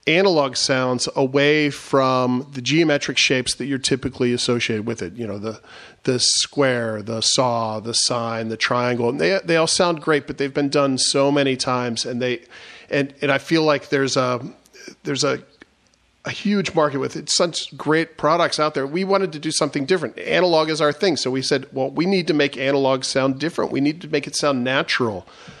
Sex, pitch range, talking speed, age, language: male, 130-155 Hz, 205 wpm, 40-59, English